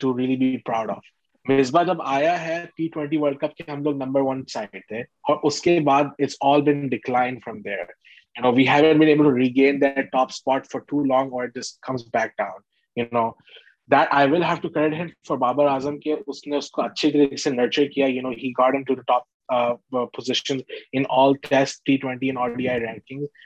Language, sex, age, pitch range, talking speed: Urdu, male, 20-39, 130-150 Hz, 205 wpm